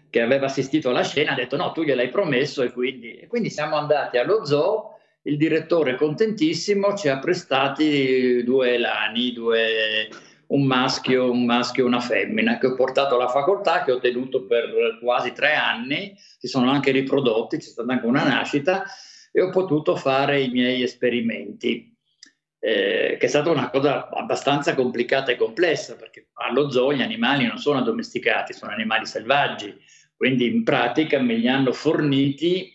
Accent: native